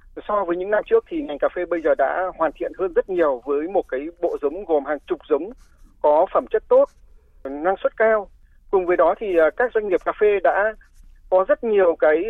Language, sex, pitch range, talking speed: Vietnamese, male, 180-290 Hz, 230 wpm